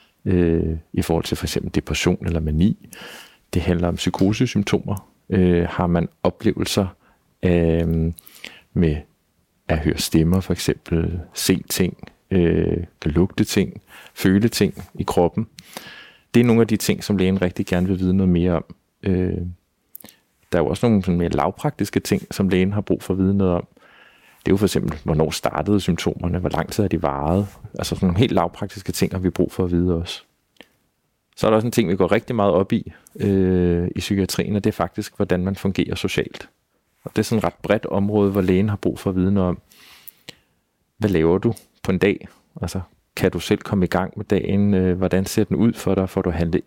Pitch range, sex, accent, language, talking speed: 85-100 Hz, male, native, Danish, 195 wpm